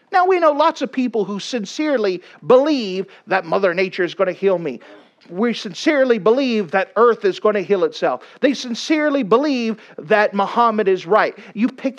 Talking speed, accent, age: 180 wpm, American, 50-69